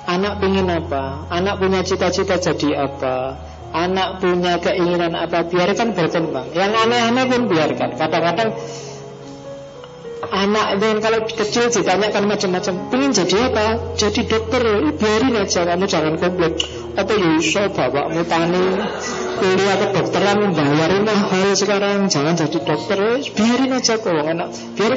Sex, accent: female, Indian